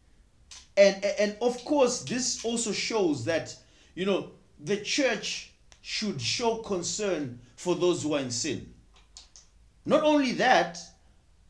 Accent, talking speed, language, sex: South African, 125 wpm, English, male